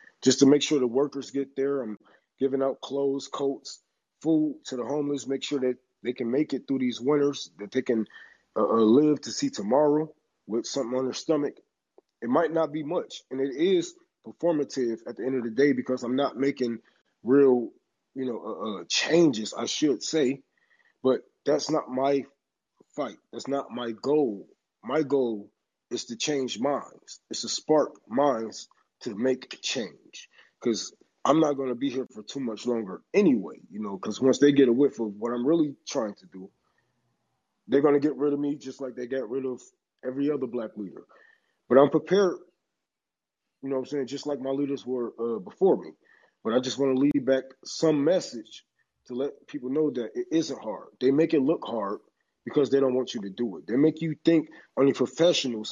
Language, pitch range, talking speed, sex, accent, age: English, 125-145 Hz, 200 wpm, male, American, 20-39